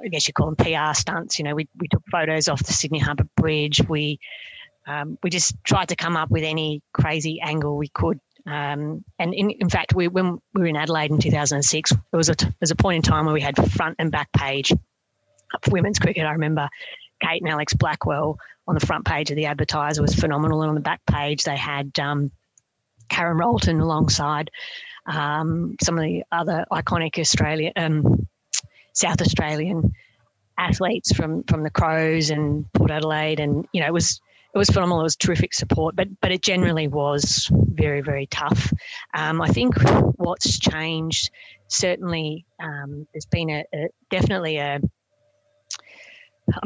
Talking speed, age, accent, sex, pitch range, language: 190 wpm, 30-49, Australian, female, 145-170 Hz, English